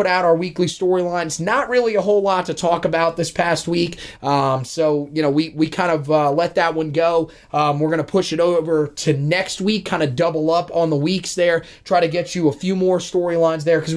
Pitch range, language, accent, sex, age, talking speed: 150-175 Hz, English, American, male, 20-39, 235 wpm